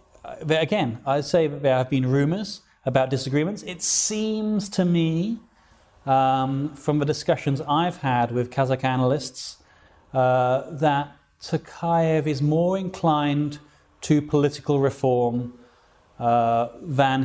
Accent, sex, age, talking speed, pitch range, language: British, male, 30-49, 120 wpm, 130-170 Hz, Russian